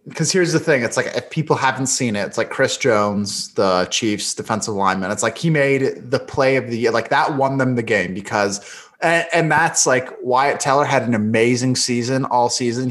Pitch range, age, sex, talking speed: 115-135 Hz, 20-39, male, 215 wpm